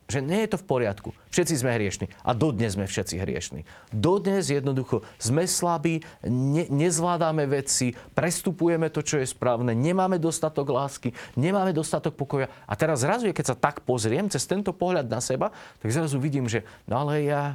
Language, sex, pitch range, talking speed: Slovak, male, 120-170 Hz, 175 wpm